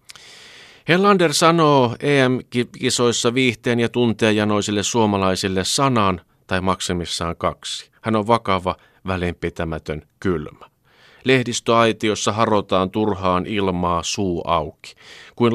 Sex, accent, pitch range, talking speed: male, native, 90-125 Hz, 90 wpm